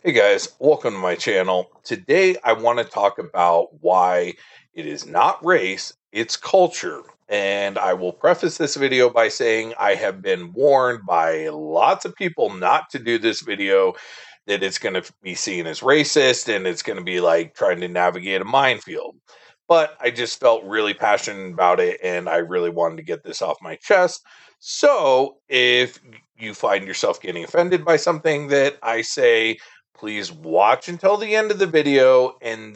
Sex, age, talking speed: male, 40-59, 175 wpm